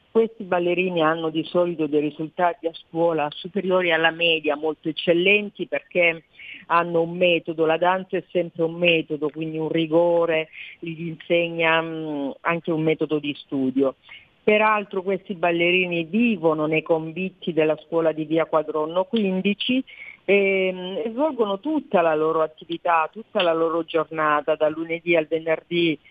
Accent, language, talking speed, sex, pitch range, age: native, Italian, 140 wpm, female, 155-185 Hz, 40-59